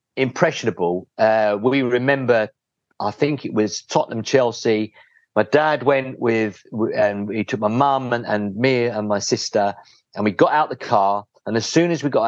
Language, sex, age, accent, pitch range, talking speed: English, male, 40-59, British, 105-155 Hz, 180 wpm